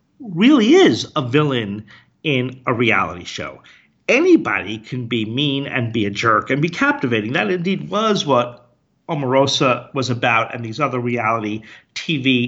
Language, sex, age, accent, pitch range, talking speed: English, male, 50-69, American, 115-155 Hz, 150 wpm